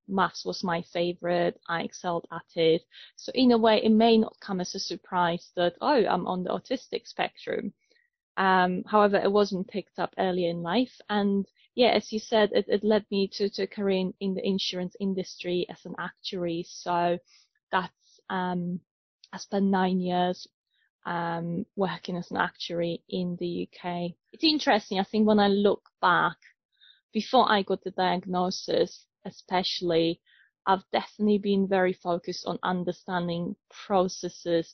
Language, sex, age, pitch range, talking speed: English, female, 20-39, 180-210 Hz, 160 wpm